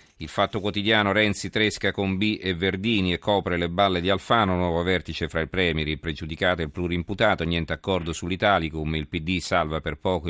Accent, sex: native, male